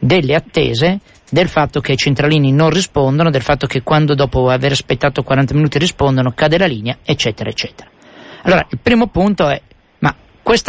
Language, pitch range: Italian, 140-205 Hz